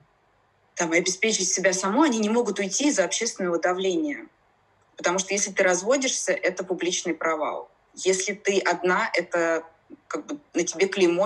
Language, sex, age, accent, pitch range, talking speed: Russian, female, 20-39, native, 170-245 Hz, 145 wpm